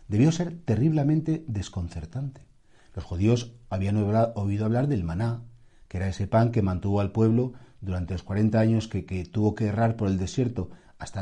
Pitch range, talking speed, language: 95-130 Hz, 170 wpm, Spanish